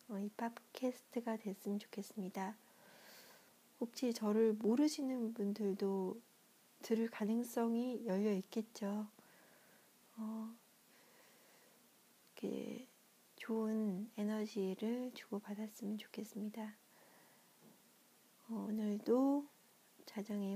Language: Korean